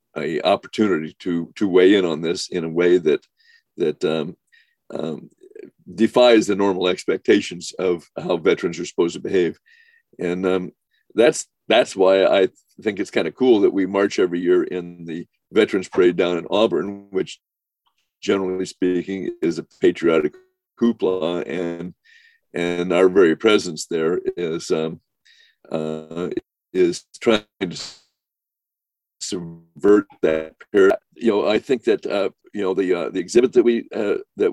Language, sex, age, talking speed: English, male, 50-69, 150 wpm